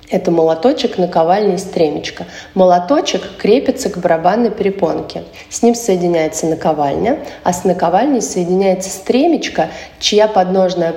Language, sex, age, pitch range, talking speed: Russian, female, 30-49, 170-195 Hz, 115 wpm